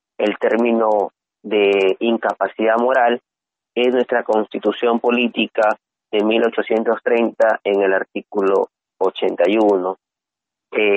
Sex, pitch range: male, 115-130 Hz